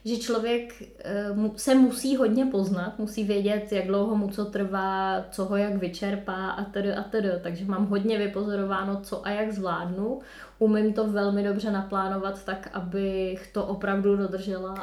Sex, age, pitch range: female, 20-39, 195-220 Hz